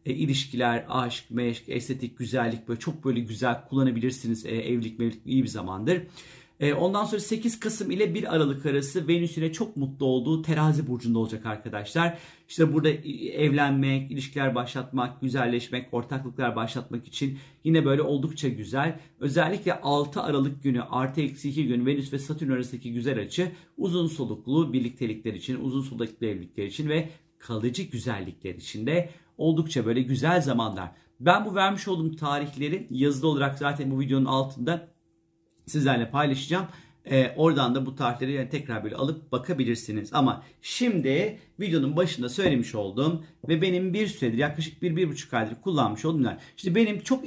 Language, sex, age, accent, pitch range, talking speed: Turkish, male, 50-69, native, 125-160 Hz, 155 wpm